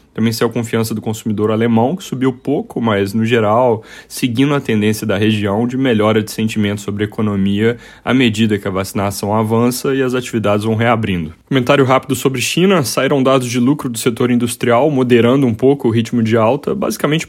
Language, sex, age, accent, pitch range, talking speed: Portuguese, male, 10-29, Brazilian, 110-125 Hz, 185 wpm